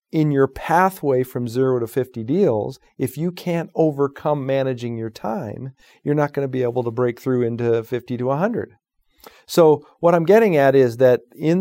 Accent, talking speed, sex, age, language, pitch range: American, 185 wpm, male, 50-69, English, 125-150 Hz